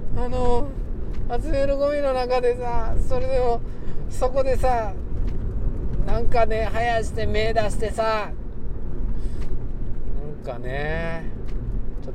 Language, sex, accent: Japanese, male, native